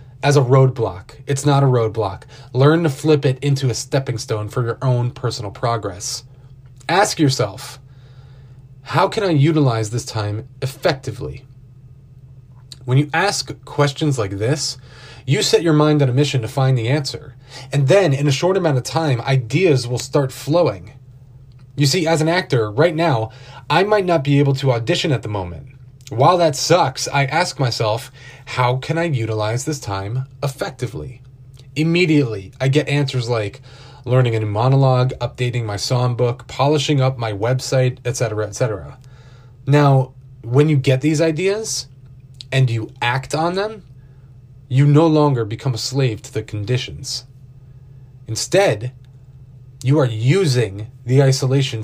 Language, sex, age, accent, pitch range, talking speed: English, male, 30-49, American, 125-140 Hz, 155 wpm